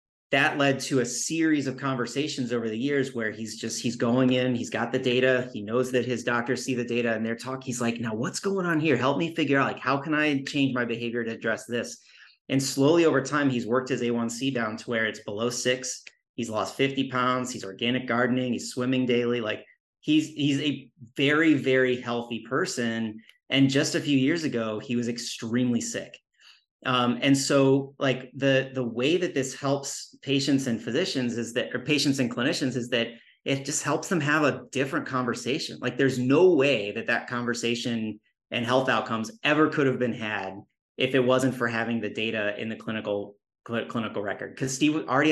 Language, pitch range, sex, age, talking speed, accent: English, 120-135 Hz, male, 30-49, 205 wpm, American